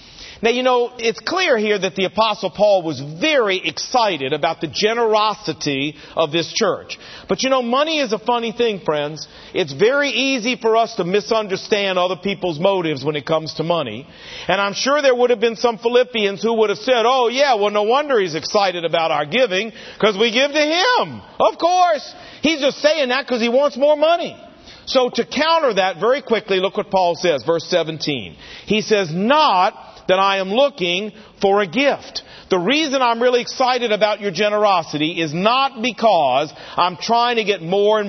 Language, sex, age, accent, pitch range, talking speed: English, male, 50-69, American, 185-255 Hz, 190 wpm